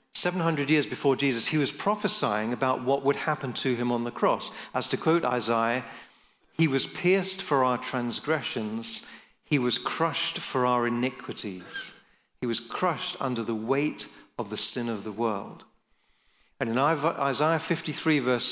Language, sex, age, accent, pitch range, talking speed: English, male, 40-59, British, 120-150 Hz, 160 wpm